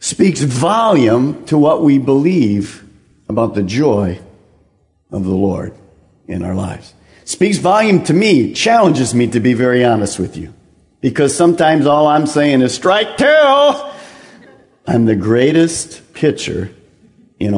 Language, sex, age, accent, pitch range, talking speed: English, male, 50-69, American, 105-175 Hz, 135 wpm